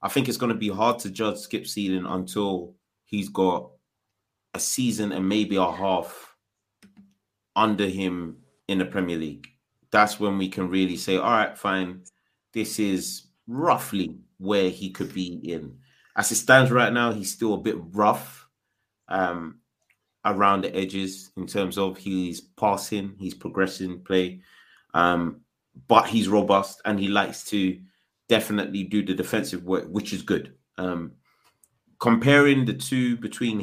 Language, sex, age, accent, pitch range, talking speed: English, male, 30-49, British, 95-110 Hz, 155 wpm